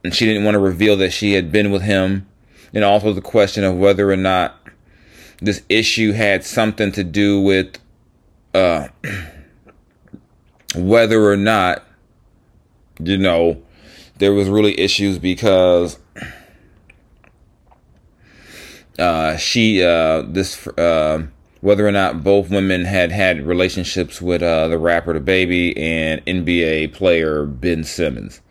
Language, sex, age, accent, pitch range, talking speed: English, male, 30-49, American, 85-100 Hz, 130 wpm